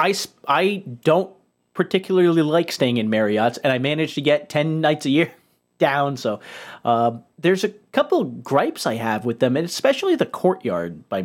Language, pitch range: English, 120-165 Hz